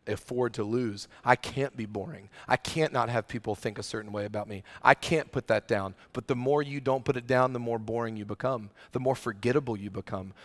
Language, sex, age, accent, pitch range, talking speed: English, male, 40-59, American, 110-135 Hz, 235 wpm